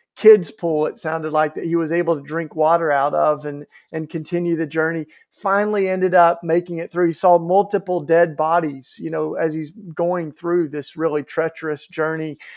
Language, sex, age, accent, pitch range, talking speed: English, male, 50-69, American, 150-190 Hz, 190 wpm